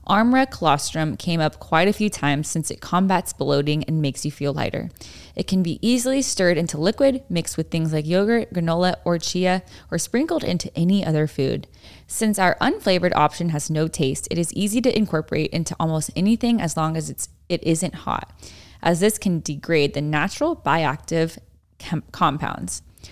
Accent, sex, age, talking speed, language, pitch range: American, female, 10-29, 175 wpm, English, 155-190 Hz